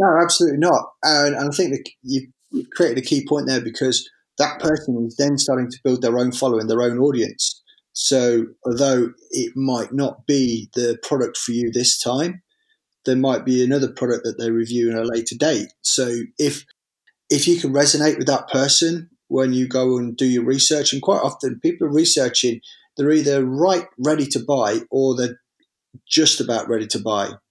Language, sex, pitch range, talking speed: English, male, 115-140 Hz, 190 wpm